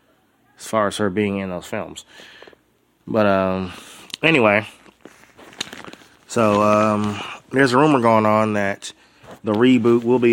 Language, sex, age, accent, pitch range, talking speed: English, male, 20-39, American, 95-110 Hz, 135 wpm